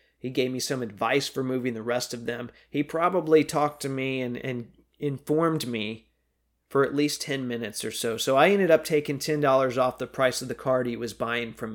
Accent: American